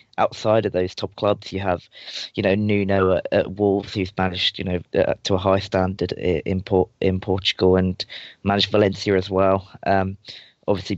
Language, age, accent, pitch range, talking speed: English, 20-39, British, 95-105 Hz, 180 wpm